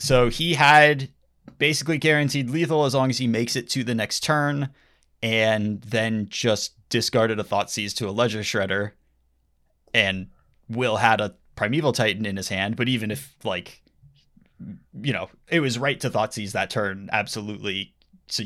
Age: 20-39